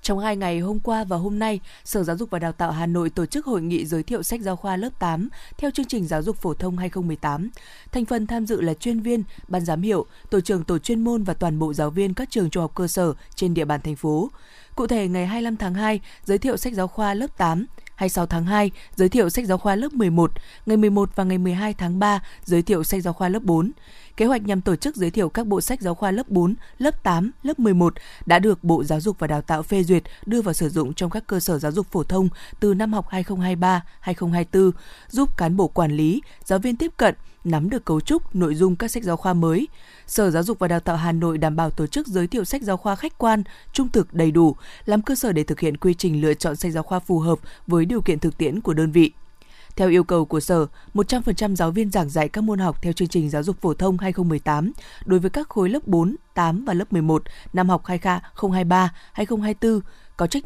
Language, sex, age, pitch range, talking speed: Vietnamese, female, 20-39, 170-215 Hz, 250 wpm